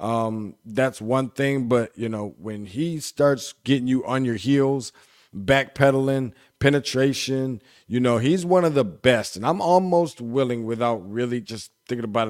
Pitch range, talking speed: 110-140 Hz, 160 wpm